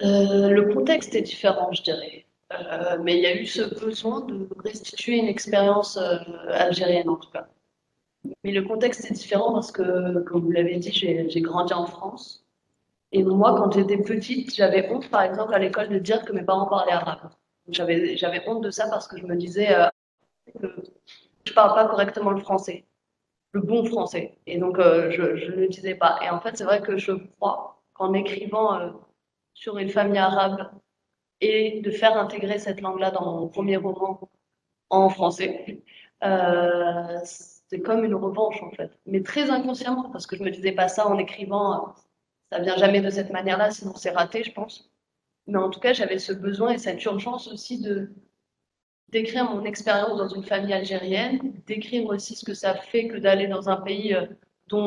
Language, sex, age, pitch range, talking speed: Spanish, female, 30-49, 185-215 Hz, 195 wpm